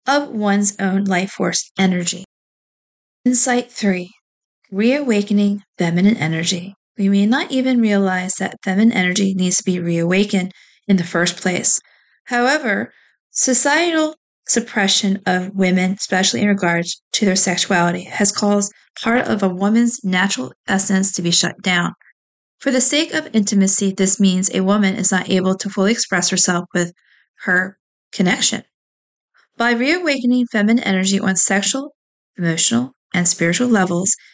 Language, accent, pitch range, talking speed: English, American, 190-235 Hz, 140 wpm